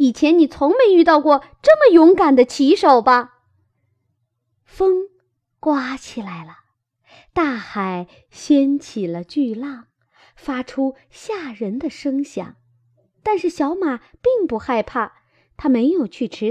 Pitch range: 185-305 Hz